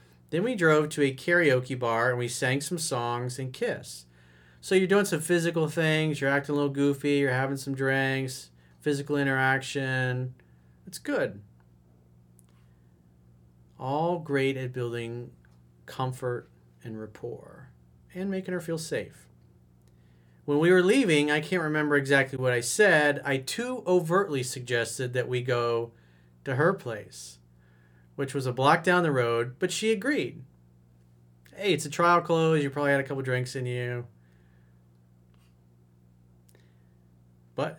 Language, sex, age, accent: English, male, 40-59, American